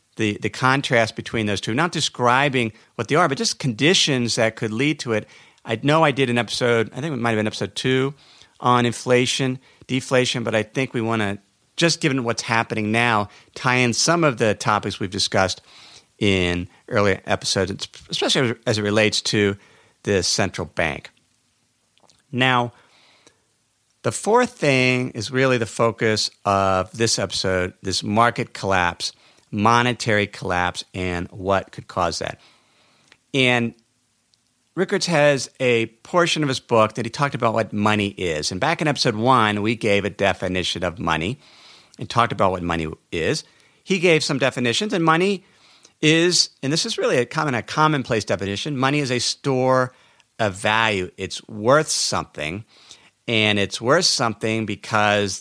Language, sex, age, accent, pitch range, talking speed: English, male, 50-69, American, 105-130 Hz, 160 wpm